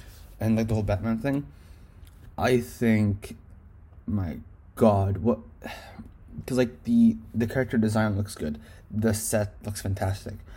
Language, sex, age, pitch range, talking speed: English, male, 20-39, 100-120 Hz, 130 wpm